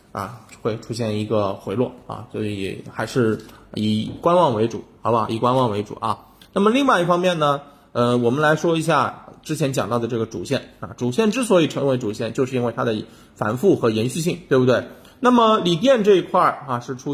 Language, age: Chinese, 20-39